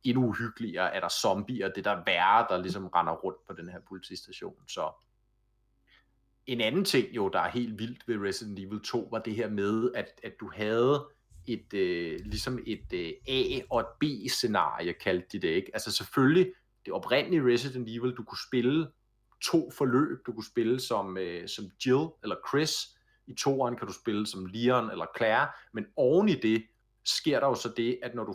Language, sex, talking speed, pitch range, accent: Danish, male, 195 wpm, 115-155 Hz, native